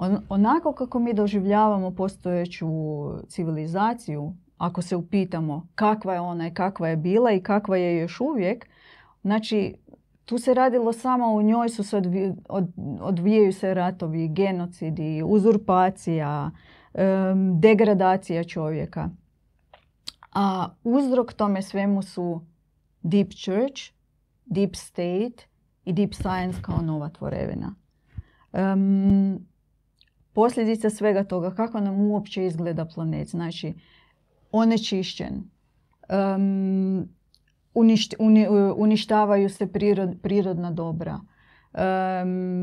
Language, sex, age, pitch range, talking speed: Croatian, female, 30-49, 175-210 Hz, 105 wpm